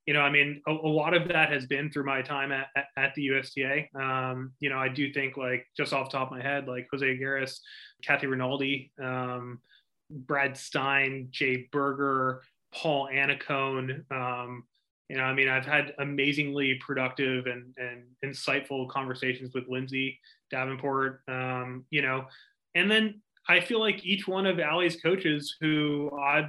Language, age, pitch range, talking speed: English, 20-39, 130-155 Hz, 170 wpm